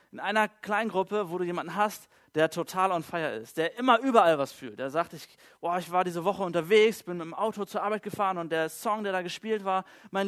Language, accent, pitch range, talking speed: German, German, 165-210 Hz, 240 wpm